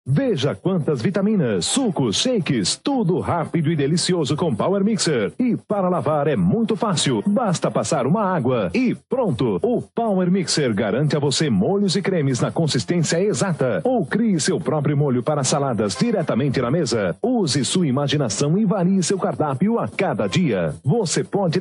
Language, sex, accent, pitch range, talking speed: Portuguese, male, Brazilian, 150-200 Hz, 160 wpm